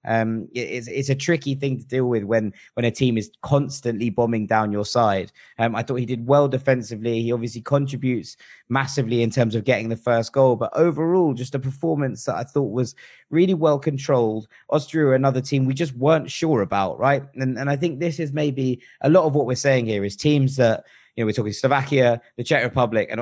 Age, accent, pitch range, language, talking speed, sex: 20-39, British, 115-140 Hz, English, 215 wpm, male